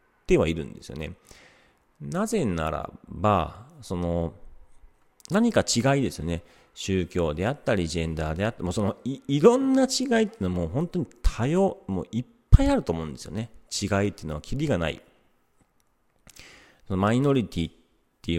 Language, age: Japanese, 40-59